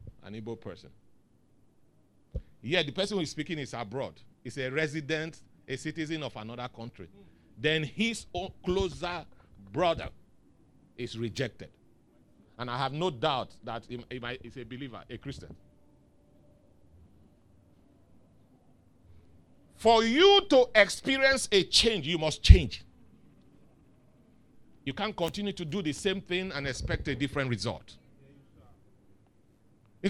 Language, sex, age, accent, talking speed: English, male, 50-69, Nigerian, 120 wpm